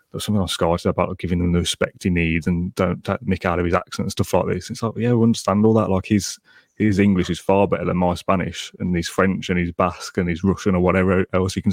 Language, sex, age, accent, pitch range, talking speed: English, male, 20-39, British, 90-100 Hz, 275 wpm